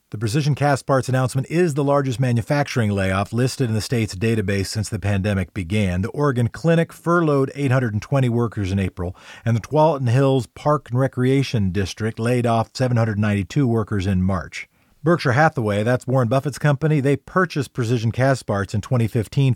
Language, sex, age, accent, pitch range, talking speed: English, male, 40-59, American, 105-135 Hz, 165 wpm